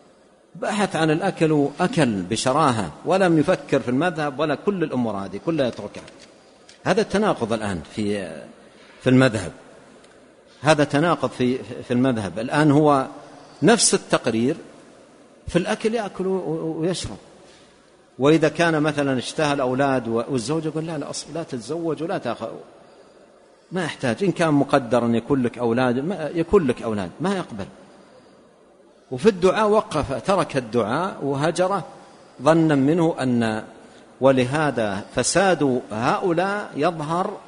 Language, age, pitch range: Arabic, 50-69, 115-165 Hz